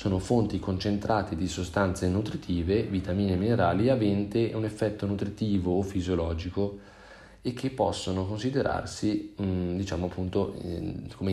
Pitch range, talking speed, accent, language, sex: 90-105 Hz, 125 wpm, native, Italian, male